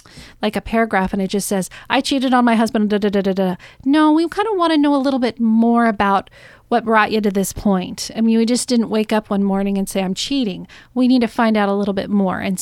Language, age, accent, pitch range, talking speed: English, 40-59, American, 205-245 Hz, 275 wpm